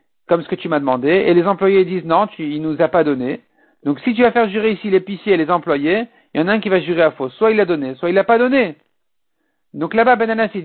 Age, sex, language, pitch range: 50-69, male, French, 175-225 Hz